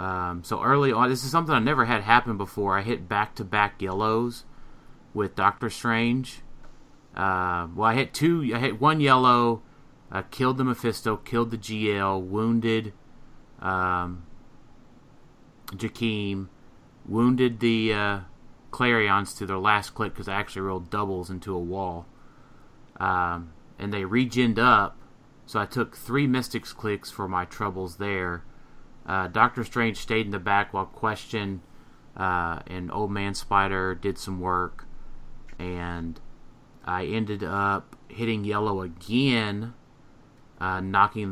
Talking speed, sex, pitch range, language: 140 wpm, male, 95-115 Hz, English